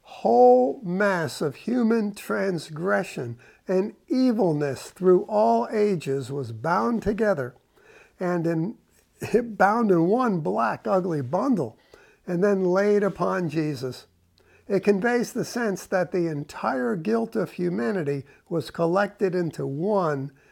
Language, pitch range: English, 160-220 Hz